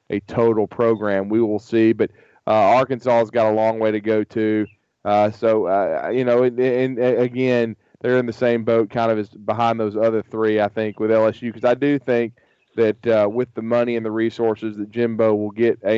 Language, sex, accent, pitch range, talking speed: English, male, American, 115-130 Hz, 220 wpm